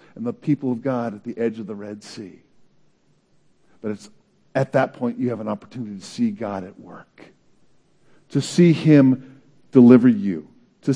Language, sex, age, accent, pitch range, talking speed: English, male, 50-69, American, 110-170 Hz, 175 wpm